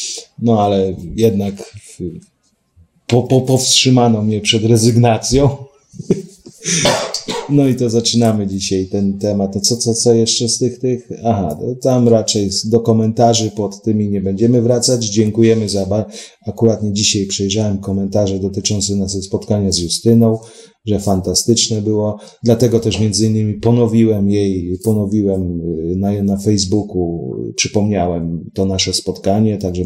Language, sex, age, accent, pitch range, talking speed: Polish, male, 30-49, native, 100-115 Hz, 130 wpm